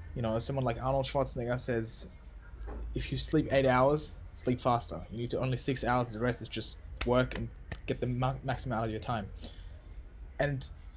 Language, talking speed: English, 185 wpm